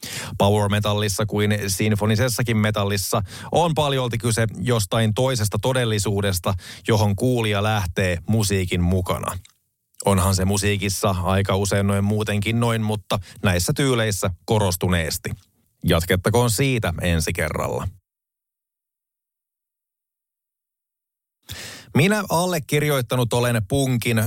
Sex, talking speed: male, 85 wpm